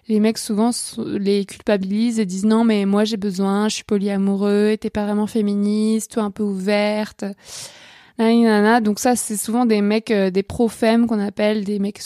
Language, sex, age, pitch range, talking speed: French, female, 20-39, 205-225 Hz, 185 wpm